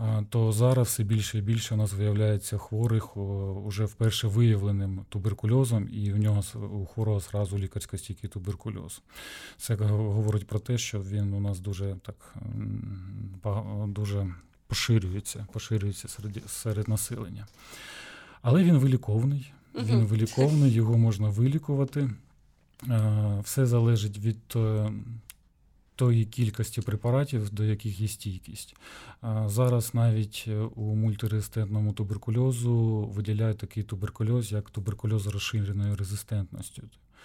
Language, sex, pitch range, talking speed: Ukrainian, male, 105-115 Hz, 110 wpm